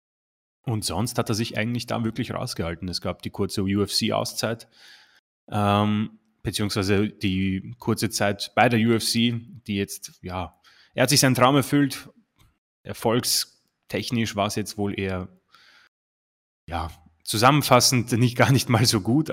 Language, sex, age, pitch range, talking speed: German, male, 20-39, 100-120 Hz, 140 wpm